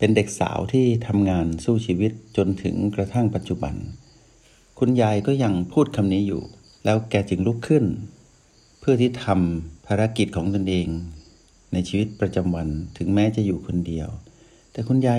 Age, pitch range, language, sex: 60-79, 90-110 Hz, Thai, male